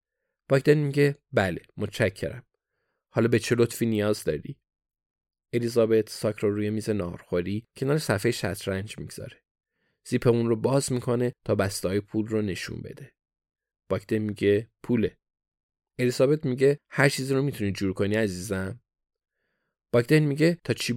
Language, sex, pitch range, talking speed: Persian, male, 100-120 Hz, 130 wpm